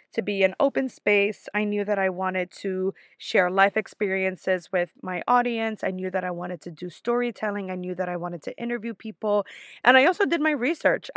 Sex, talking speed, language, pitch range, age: female, 210 wpm, English, 185-230 Hz, 20-39